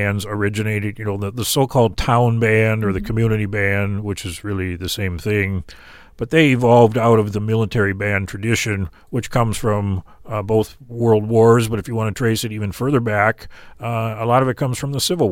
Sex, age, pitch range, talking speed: male, 40-59, 100-115 Hz, 210 wpm